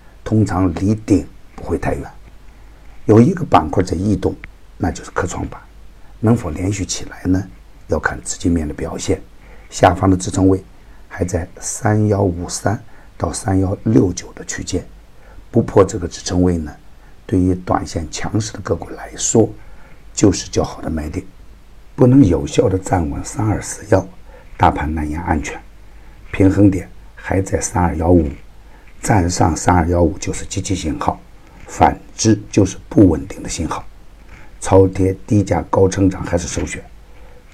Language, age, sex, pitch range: Chinese, 60-79, male, 85-100 Hz